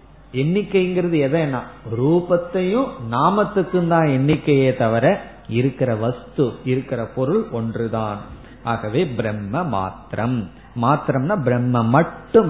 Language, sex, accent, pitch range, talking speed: Tamil, male, native, 120-170 Hz, 85 wpm